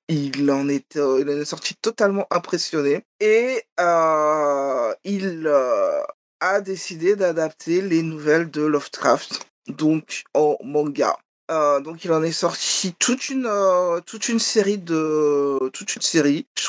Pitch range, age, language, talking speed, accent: 155-205 Hz, 20-39, French, 145 wpm, French